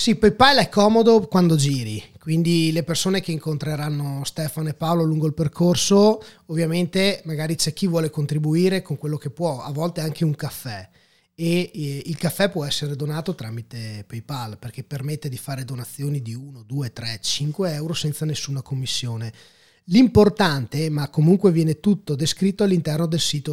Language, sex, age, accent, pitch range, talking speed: Italian, male, 20-39, native, 125-170 Hz, 160 wpm